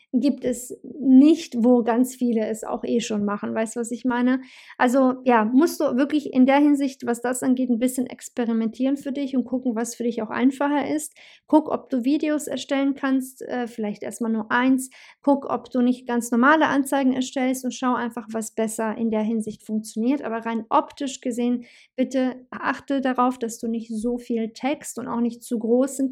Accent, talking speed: German, 200 wpm